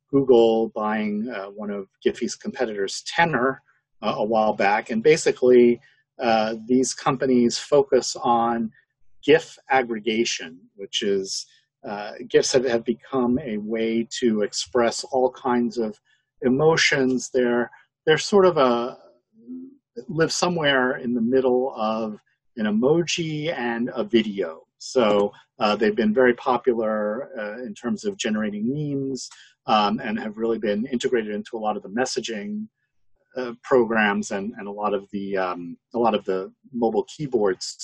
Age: 50-69